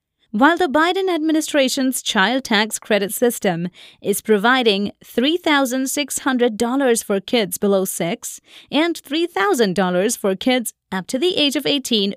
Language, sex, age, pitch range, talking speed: English, female, 30-49, 195-295 Hz, 125 wpm